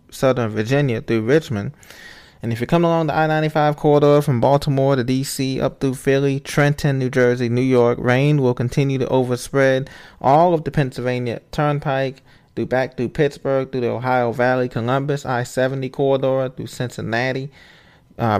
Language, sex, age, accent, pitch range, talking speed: English, male, 20-39, American, 125-150 Hz, 165 wpm